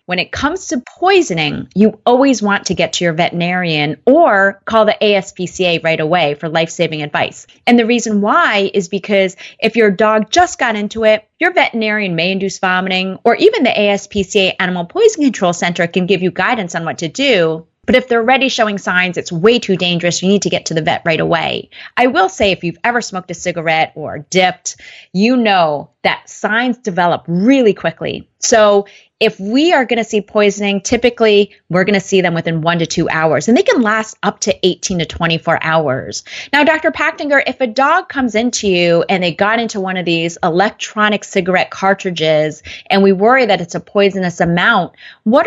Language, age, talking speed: English, 30-49, 200 wpm